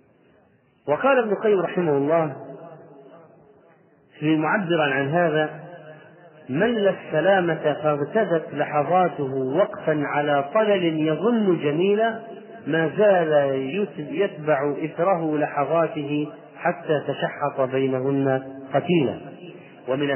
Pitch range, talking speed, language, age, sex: 150-205 Hz, 85 wpm, Arabic, 40-59, male